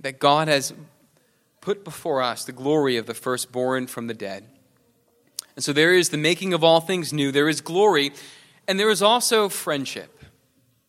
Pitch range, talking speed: 140-195 Hz, 175 wpm